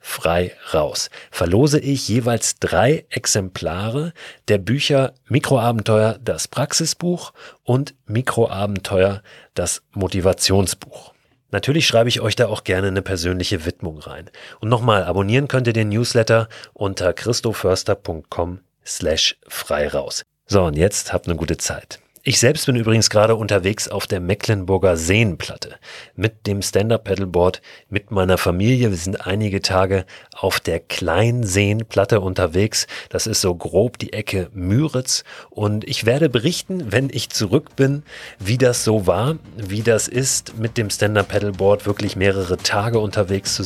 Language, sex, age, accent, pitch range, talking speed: German, male, 40-59, German, 95-120 Hz, 140 wpm